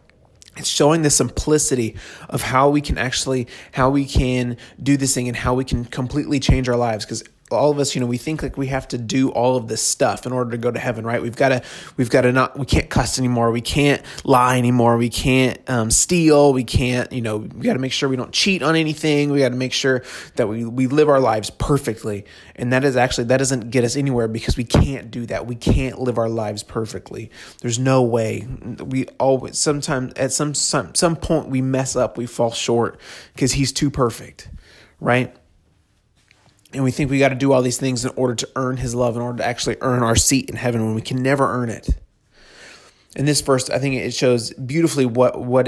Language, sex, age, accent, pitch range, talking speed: English, male, 20-39, American, 115-135 Hz, 230 wpm